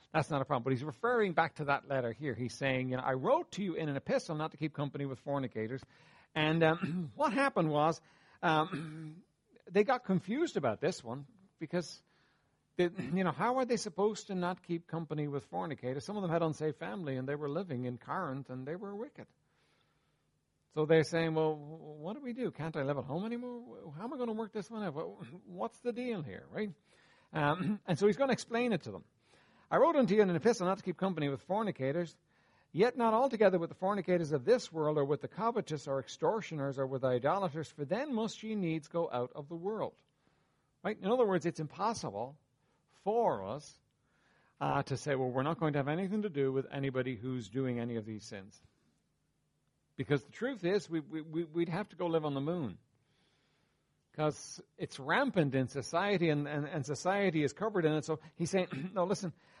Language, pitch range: English, 140-195 Hz